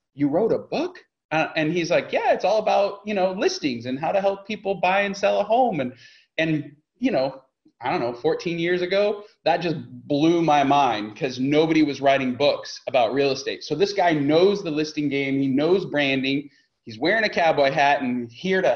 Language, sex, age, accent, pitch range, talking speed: English, male, 20-39, American, 135-185 Hz, 215 wpm